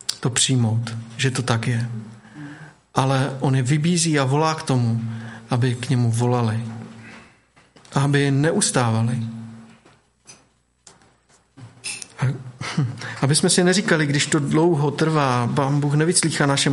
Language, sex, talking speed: Czech, male, 120 wpm